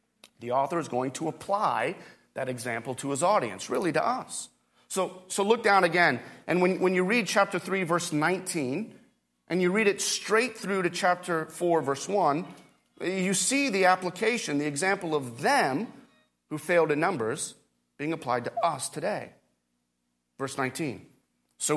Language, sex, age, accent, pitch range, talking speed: English, male, 30-49, American, 115-170 Hz, 165 wpm